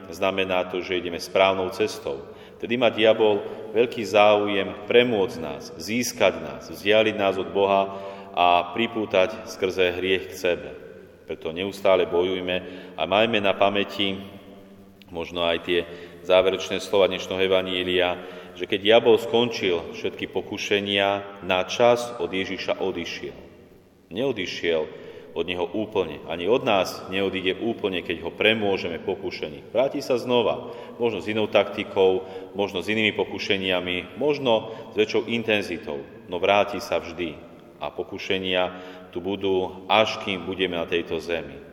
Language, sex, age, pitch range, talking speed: Slovak, male, 40-59, 90-105 Hz, 130 wpm